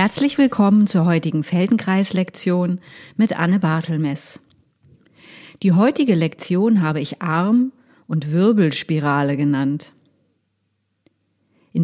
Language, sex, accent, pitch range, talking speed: German, female, German, 150-215 Hz, 90 wpm